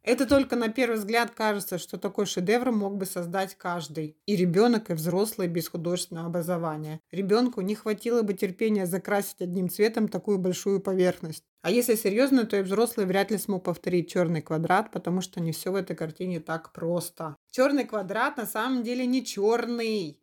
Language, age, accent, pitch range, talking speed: Russian, 30-49, native, 175-225 Hz, 175 wpm